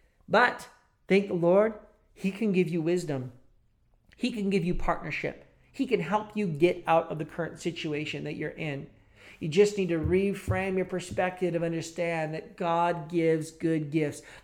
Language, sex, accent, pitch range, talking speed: English, male, American, 155-205 Hz, 170 wpm